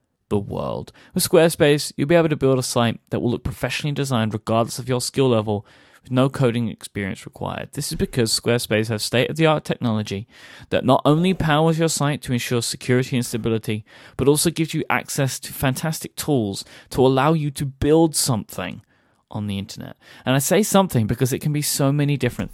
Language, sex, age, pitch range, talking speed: English, male, 30-49, 110-135 Hz, 190 wpm